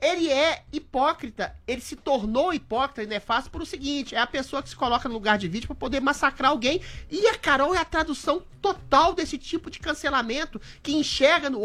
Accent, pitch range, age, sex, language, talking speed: Brazilian, 215-310 Hz, 30-49, male, Portuguese, 205 wpm